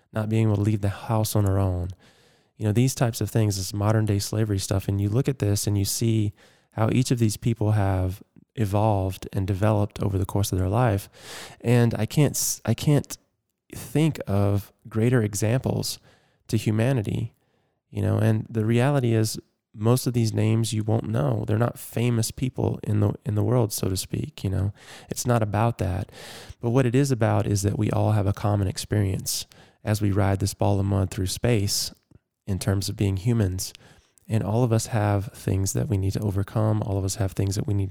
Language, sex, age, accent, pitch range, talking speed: English, male, 20-39, American, 100-115 Hz, 205 wpm